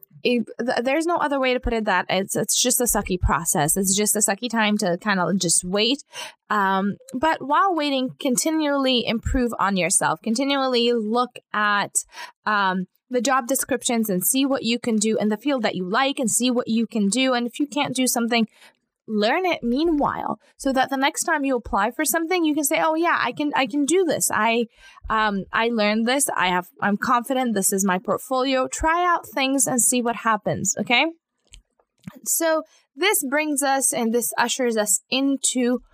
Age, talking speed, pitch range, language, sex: 20-39, 195 wpm, 205-270 Hz, English, female